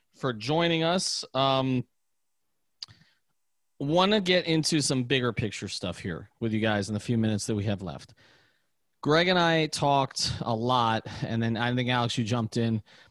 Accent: American